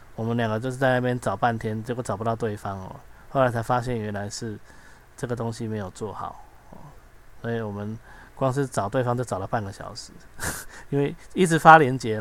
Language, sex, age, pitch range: Chinese, male, 20-39, 105-130 Hz